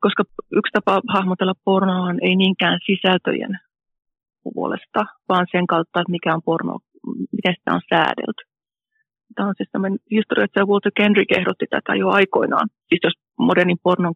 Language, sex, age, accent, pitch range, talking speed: Finnish, female, 30-49, native, 170-210 Hz, 155 wpm